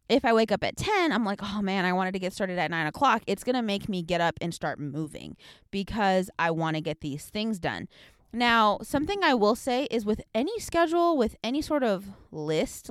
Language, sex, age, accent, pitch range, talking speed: English, female, 20-39, American, 185-255 Hz, 235 wpm